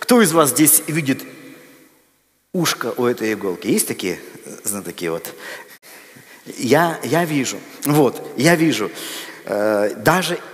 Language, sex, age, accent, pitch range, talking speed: Russian, male, 50-69, native, 145-180 Hz, 115 wpm